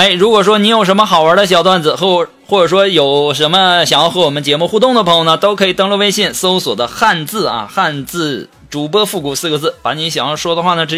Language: Chinese